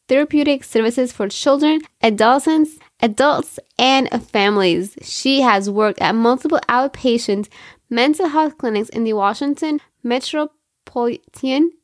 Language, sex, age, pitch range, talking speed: English, female, 10-29, 225-275 Hz, 105 wpm